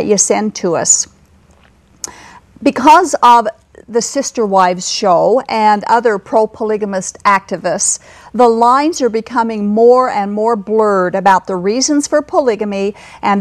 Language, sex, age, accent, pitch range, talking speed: English, female, 50-69, American, 205-255 Hz, 125 wpm